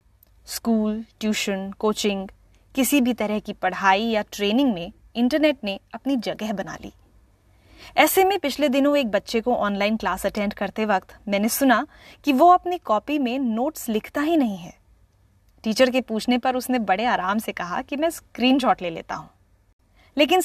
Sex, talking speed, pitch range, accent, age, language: female, 165 wpm, 200-270 Hz, native, 20-39, Hindi